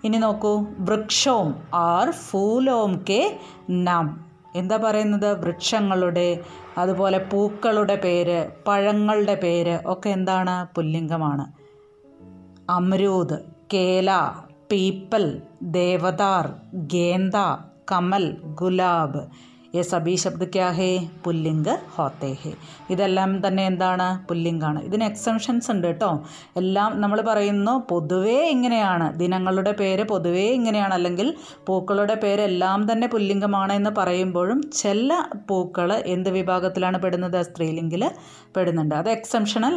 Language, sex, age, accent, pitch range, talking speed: Malayalam, female, 30-49, native, 175-210 Hz, 95 wpm